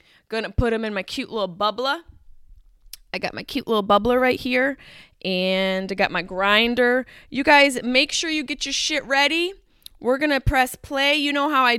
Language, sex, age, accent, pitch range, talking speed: English, female, 20-39, American, 215-285 Hz, 195 wpm